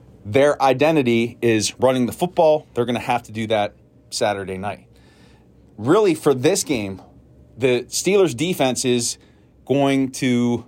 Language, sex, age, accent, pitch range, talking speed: English, male, 30-49, American, 110-140 Hz, 140 wpm